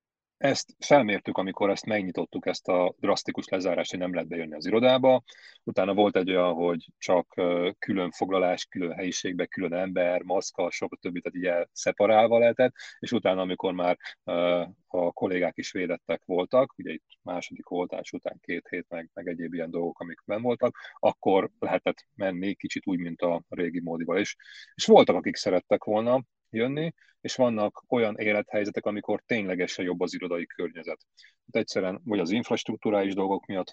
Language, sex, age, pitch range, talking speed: Hungarian, male, 30-49, 90-105 Hz, 155 wpm